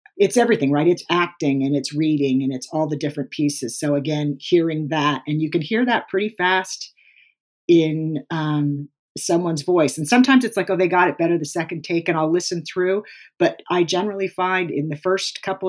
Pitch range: 150-175 Hz